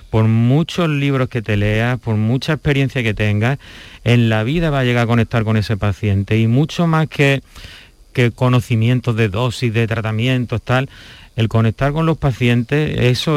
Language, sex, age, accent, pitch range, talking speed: Spanish, male, 30-49, Spanish, 110-130 Hz, 175 wpm